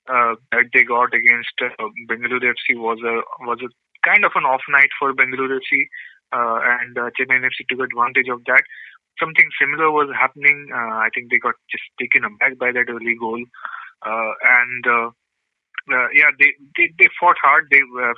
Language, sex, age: English, male, 20-39